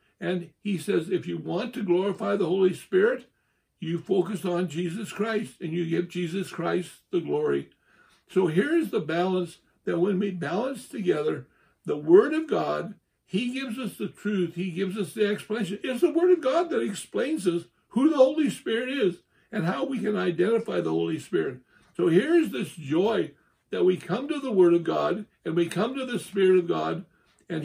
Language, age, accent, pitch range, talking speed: English, 60-79, American, 170-210 Hz, 195 wpm